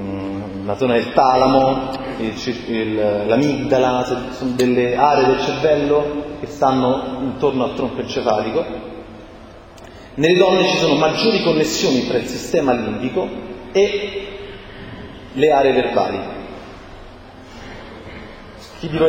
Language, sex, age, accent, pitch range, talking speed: Italian, male, 30-49, native, 105-155 Hz, 105 wpm